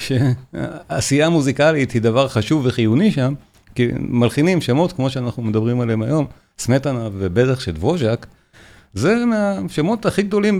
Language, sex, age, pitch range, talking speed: Hebrew, male, 40-59, 110-150 Hz, 130 wpm